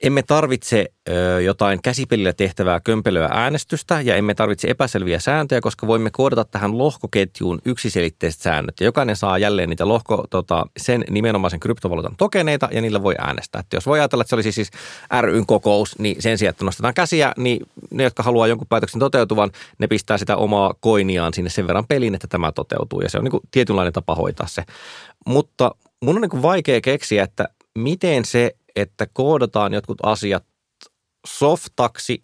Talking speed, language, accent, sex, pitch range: 170 wpm, Finnish, native, male, 95-125 Hz